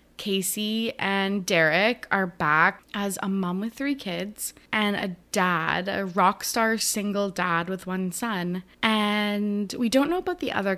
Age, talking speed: 20-39, 160 wpm